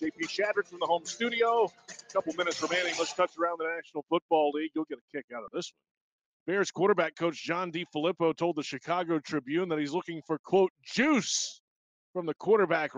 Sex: male